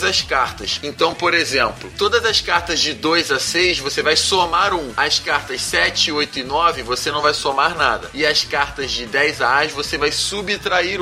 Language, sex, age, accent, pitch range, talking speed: Portuguese, male, 20-39, Brazilian, 145-205 Hz, 200 wpm